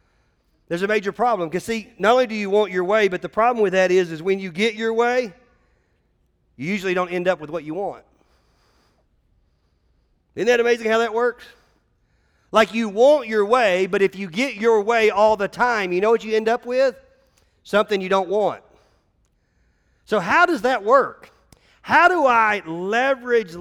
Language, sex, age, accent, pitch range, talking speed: English, male, 40-59, American, 170-220 Hz, 190 wpm